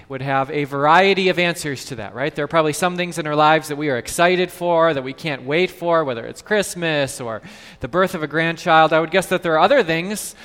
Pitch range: 140-185 Hz